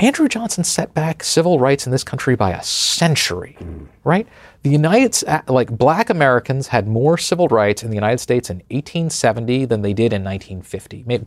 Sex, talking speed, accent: male, 170 wpm, American